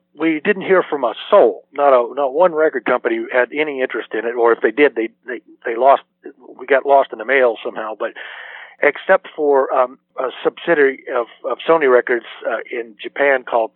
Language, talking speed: English, 200 wpm